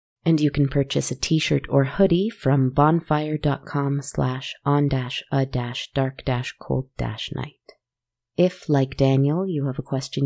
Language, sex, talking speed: English, female, 100 wpm